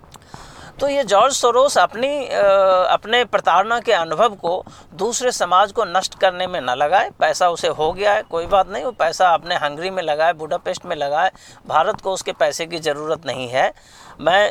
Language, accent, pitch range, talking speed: Hindi, native, 170-210 Hz, 180 wpm